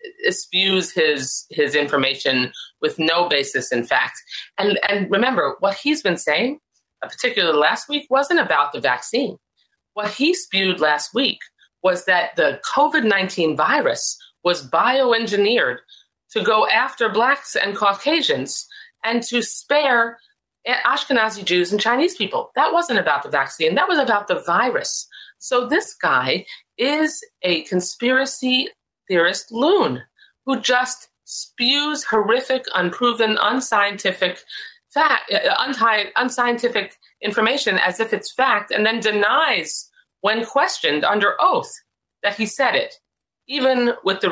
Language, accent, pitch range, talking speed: English, American, 175-275 Hz, 125 wpm